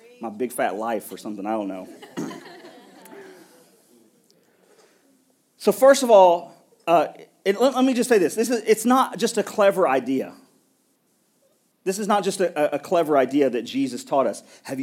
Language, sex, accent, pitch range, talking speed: English, male, American, 120-195 Hz, 175 wpm